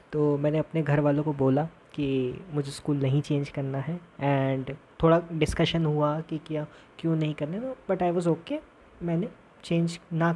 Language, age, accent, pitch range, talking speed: Hindi, 20-39, native, 150-185 Hz, 175 wpm